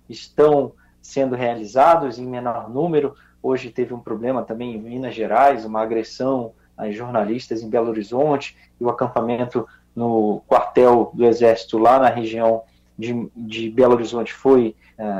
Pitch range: 120-145 Hz